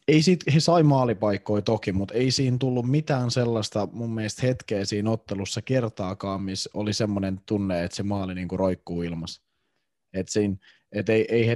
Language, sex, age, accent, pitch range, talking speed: Finnish, male, 20-39, native, 95-125 Hz, 170 wpm